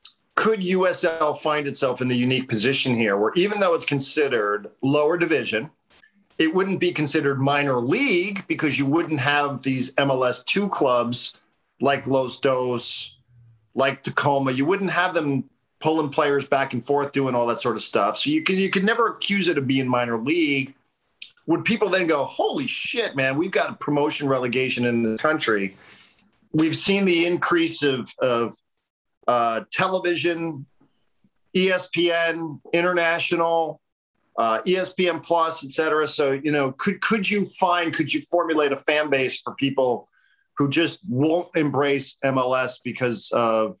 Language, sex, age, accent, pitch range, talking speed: English, male, 40-59, American, 130-170 Hz, 150 wpm